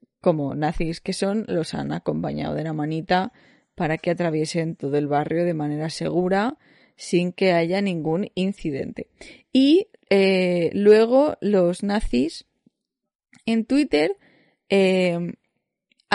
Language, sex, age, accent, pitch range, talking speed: Spanish, female, 20-39, Spanish, 175-230 Hz, 120 wpm